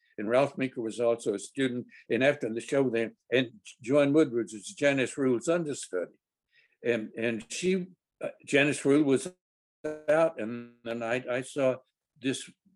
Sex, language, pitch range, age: male, English, 115-155 Hz, 60-79